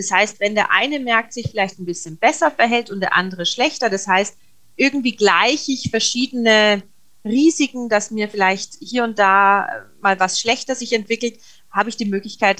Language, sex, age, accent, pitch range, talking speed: German, female, 30-49, German, 195-255 Hz, 180 wpm